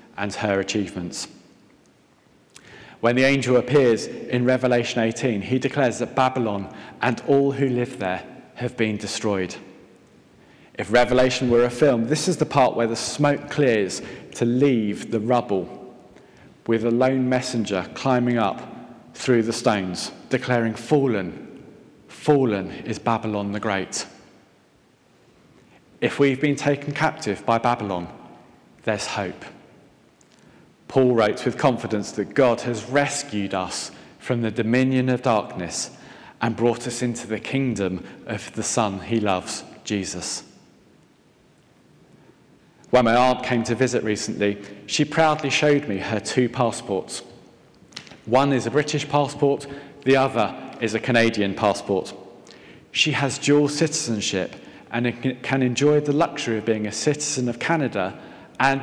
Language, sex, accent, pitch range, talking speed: English, male, British, 105-135 Hz, 135 wpm